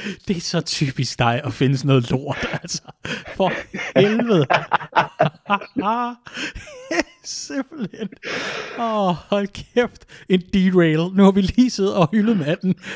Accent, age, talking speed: native, 30-49, 130 wpm